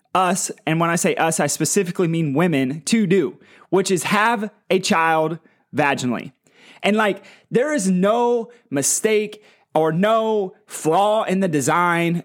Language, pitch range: English, 160-210 Hz